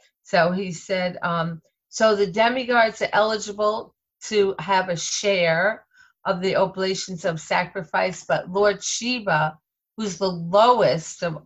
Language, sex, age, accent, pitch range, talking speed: English, female, 40-59, American, 160-200 Hz, 130 wpm